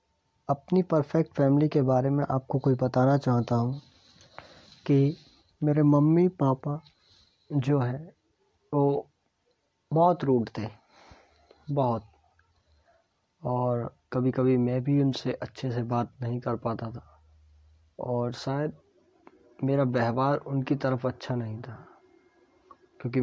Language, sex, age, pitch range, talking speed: Hindi, male, 20-39, 120-155 Hz, 115 wpm